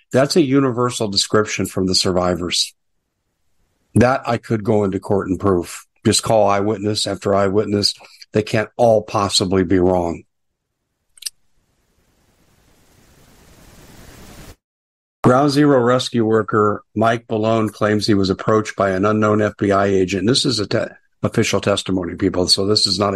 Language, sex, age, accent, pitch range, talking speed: English, male, 50-69, American, 100-115 Hz, 135 wpm